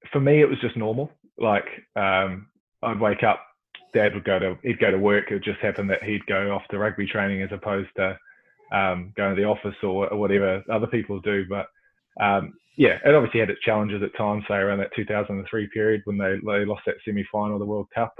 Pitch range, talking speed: 100-115 Hz, 235 wpm